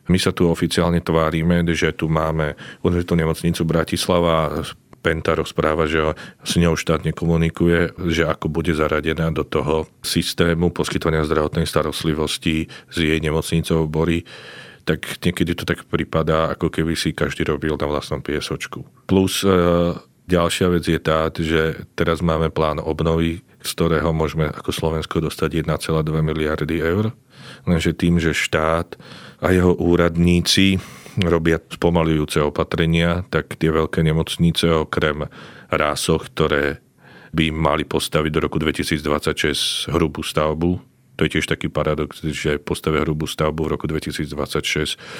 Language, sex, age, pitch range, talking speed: Slovak, male, 40-59, 80-85 Hz, 135 wpm